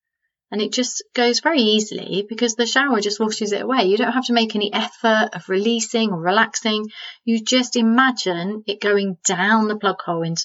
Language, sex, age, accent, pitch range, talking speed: English, female, 30-49, British, 190-230 Hz, 195 wpm